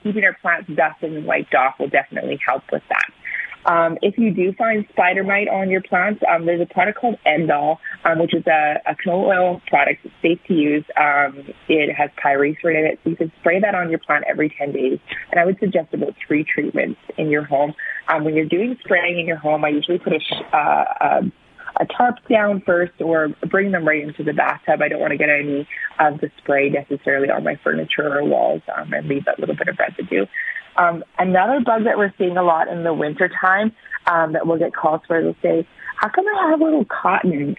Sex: female